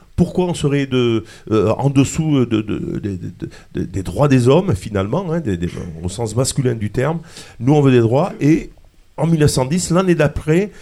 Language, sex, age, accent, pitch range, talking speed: French, male, 50-69, French, 120-165 Hz, 150 wpm